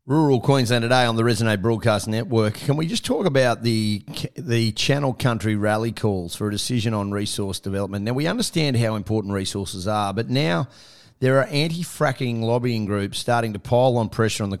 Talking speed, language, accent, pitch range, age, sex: 190 wpm, English, Australian, 105-125 Hz, 30-49, male